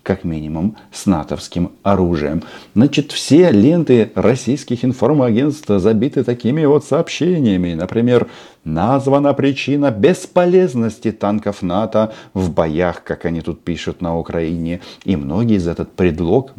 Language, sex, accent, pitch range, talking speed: Russian, male, native, 90-140 Hz, 120 wpm